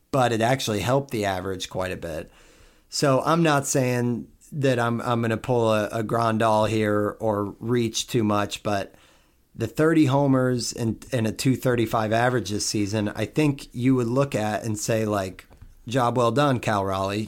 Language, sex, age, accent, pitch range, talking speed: English, male, 40-59, American, 110-130 Hz, 180 wpm